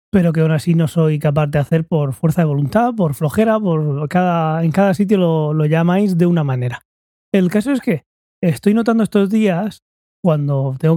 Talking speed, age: 195 wpm, 20-39